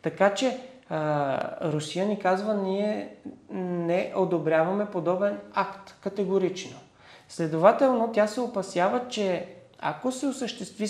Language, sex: Bulgarian, male